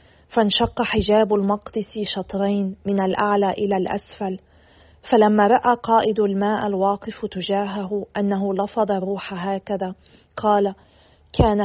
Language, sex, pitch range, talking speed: Arabic, female, 195-215 Hz, 105 wpm